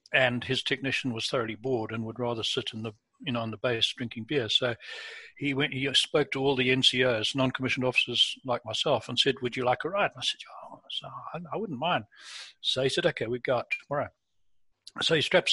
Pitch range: 120-140 Hz